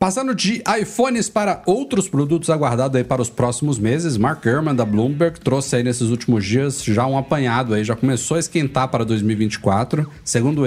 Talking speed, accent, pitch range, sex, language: 180 wpm, Brazilian, 110-135 Hz, male, Portuguese